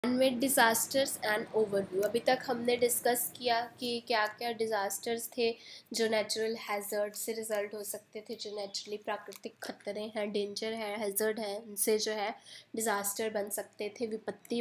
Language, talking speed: English, 140 wpm